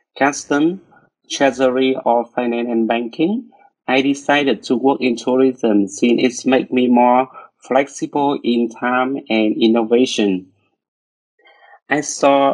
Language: French